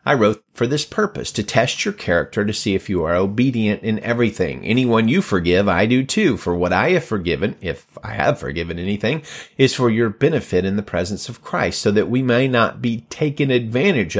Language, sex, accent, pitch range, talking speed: English, male, American, 100-125 Hz, 210 wpm